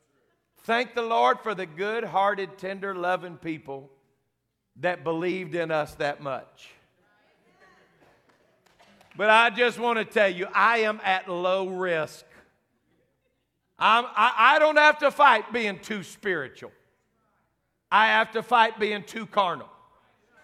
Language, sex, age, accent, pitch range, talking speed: English, male, 50-69, American, 185-245 Hz, 130 wpm